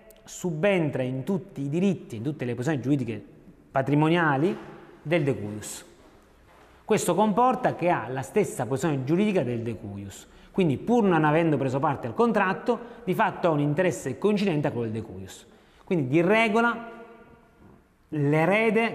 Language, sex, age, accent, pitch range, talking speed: Italian, male, 30-49, native, 120-165 Hz, 140 wpm